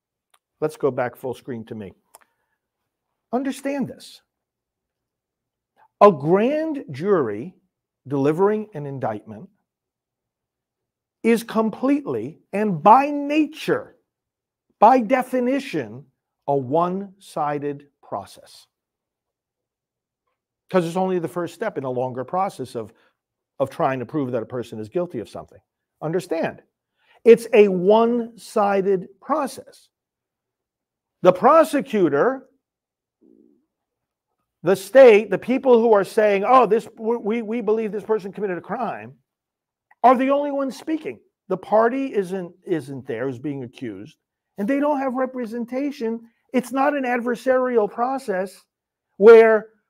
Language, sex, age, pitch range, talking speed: English, male, 50-69, 180-255 Hz, 115 wpm